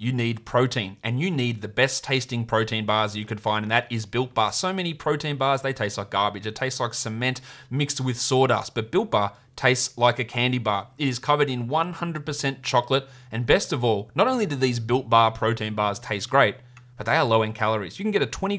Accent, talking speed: Australian, 235 wpm